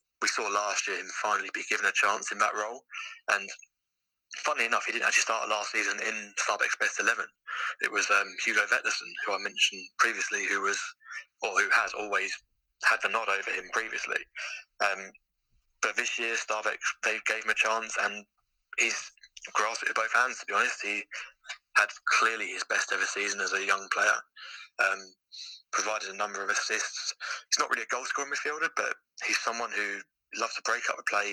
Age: 20-39